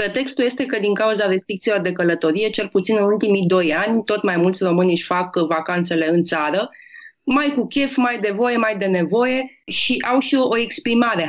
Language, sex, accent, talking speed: Romanian, female, native, 200 wpm